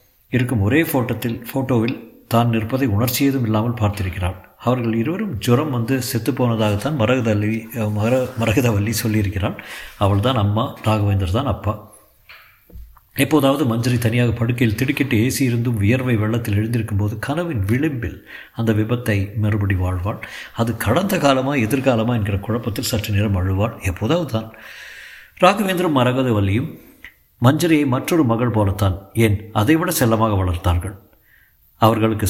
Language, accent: Tamil, native